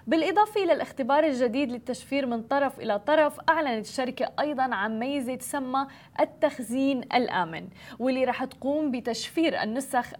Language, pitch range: Arabic, 230-290 Hz